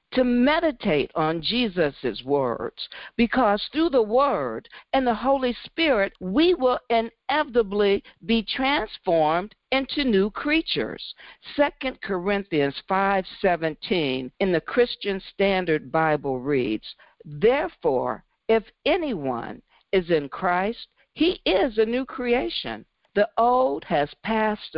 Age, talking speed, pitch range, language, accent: 50-69, 110 wpm, 160-250 Hz, English, American